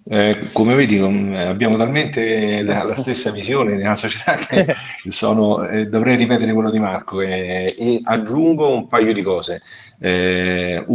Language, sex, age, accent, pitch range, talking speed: Italian, male, 40-59, native, 90-105 Hz, 145 wpm